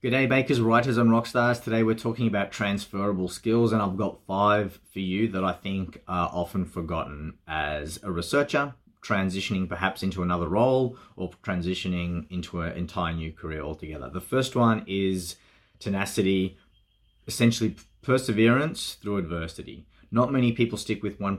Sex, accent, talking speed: male, Australian, 155 wpm